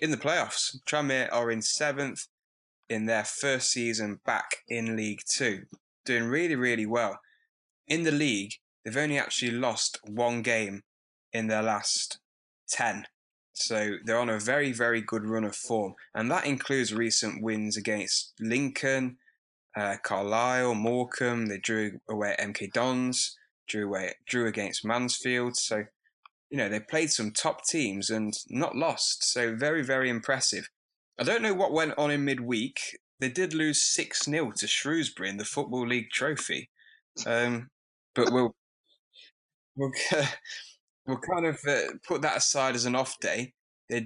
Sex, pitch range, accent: male, 110-135 Hz, British